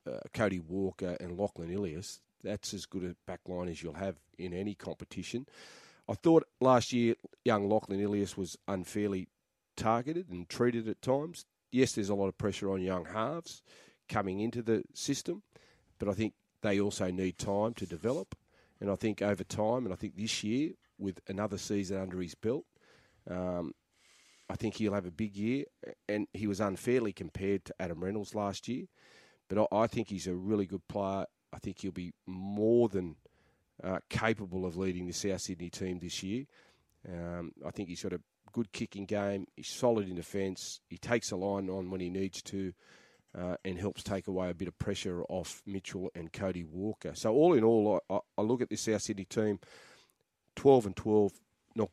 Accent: Australian